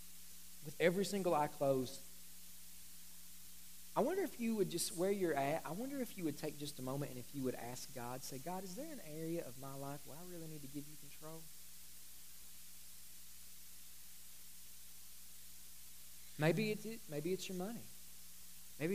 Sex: male